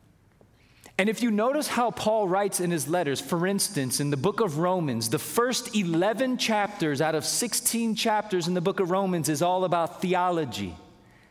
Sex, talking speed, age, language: male, 180 wpm, 30-49, English